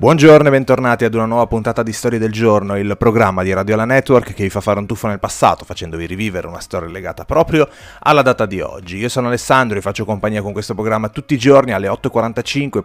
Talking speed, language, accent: 230 wpm, Italian, native